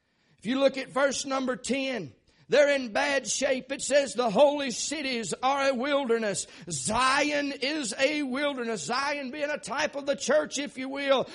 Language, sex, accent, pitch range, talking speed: English, male, American, 255-305 Hz, 170 wpm